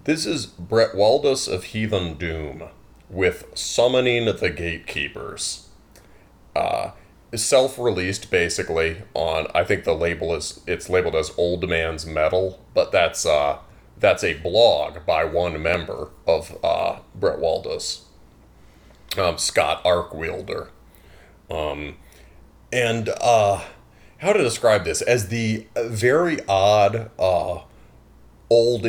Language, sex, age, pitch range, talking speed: English, male, 30-49, 85-115 Hz, 115 wpm